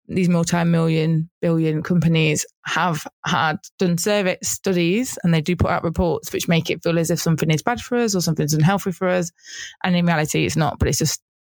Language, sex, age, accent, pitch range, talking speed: English, female, 20-39, British, 155-180 Hz, 205 wpm